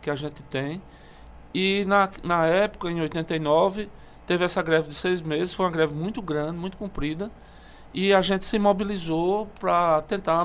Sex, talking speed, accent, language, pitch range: male, 170 wpm, Brazilian, Portuguese, 150-200 Hz